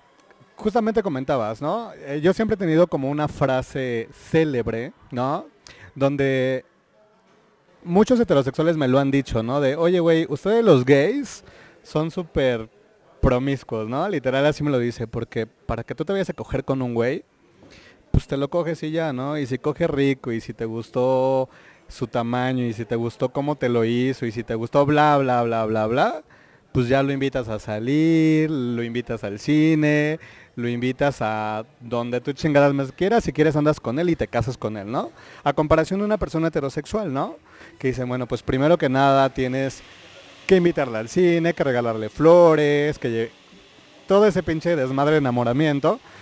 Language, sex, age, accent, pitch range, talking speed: Spanish, male, 30-49, Mexican, 120-155 Hz, 180 wpm